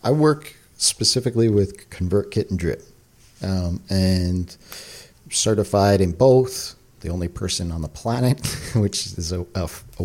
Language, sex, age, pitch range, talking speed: English, male, 40-59, 90-110 Hz, 130 wpm